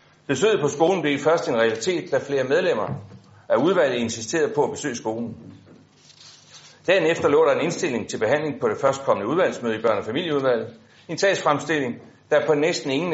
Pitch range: 120-160 Hz